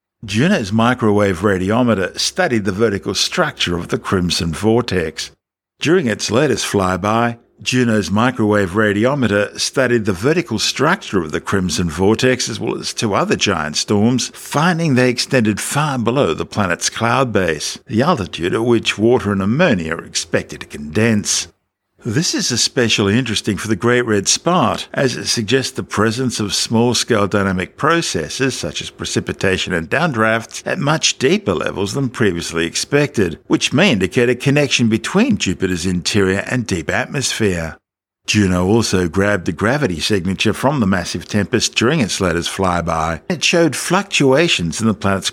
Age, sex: 60-79, male